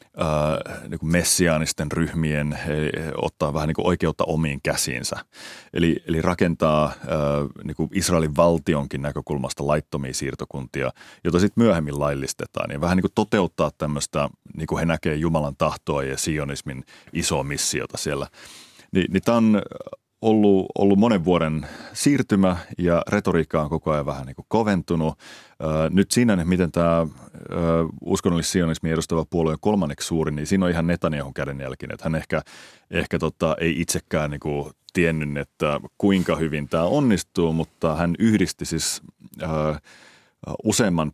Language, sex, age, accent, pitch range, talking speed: Finnish, male, 30-49, native, 75-85 Hz, 145 wpm